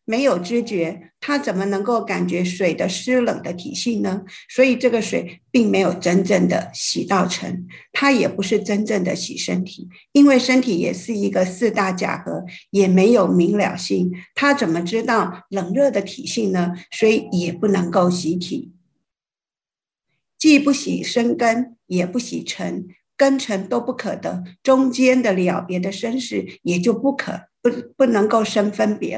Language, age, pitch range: Chinese, 50-69, 185-245 Hz